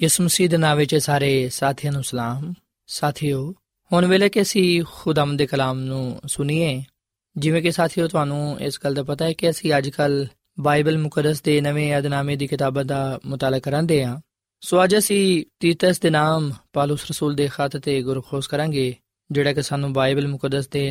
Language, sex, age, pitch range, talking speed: Punjabi, male, 20-39, 140-160 Hz, 170 wpm